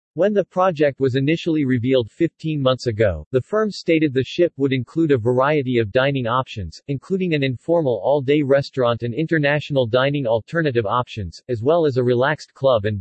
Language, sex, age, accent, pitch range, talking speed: English, male, 40-59, American, 120-150 Hz, 175 wpm